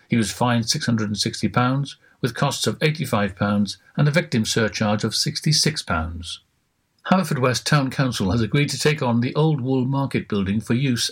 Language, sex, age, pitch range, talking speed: English, male, 60-79, 110-140 Hz, 160 wpm